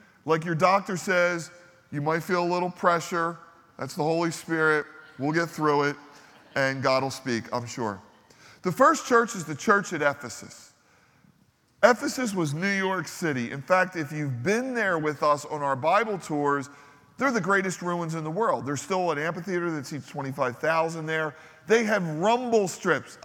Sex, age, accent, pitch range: male, 40-59, American, 145-180 Hz